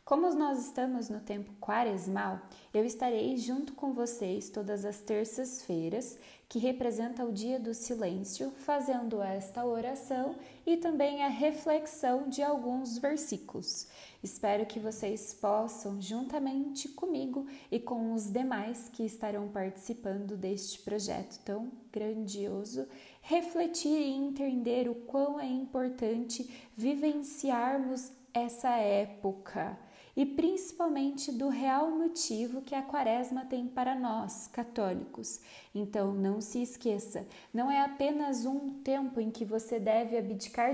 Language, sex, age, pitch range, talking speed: Portuguese, female, 20-39, 215-275 Hz, 120 wpm